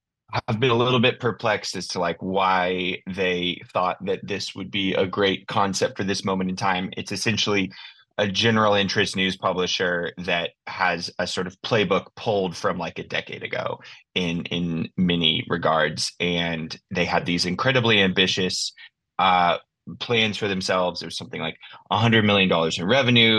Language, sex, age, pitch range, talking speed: English, male, 20-39, 85-105 Hz, 165 wpm